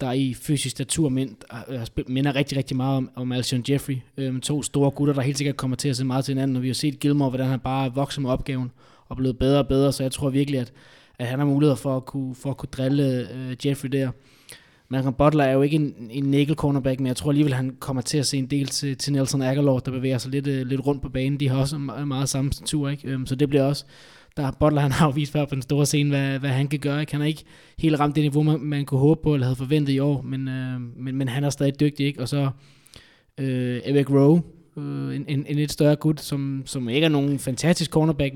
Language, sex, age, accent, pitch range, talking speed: Danish, male, 20-39, native, 130-145 Hz, 260 wpm